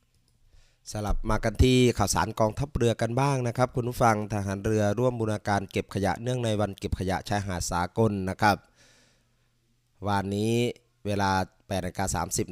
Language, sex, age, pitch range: Thai, male, 20-39, 95-115 Hz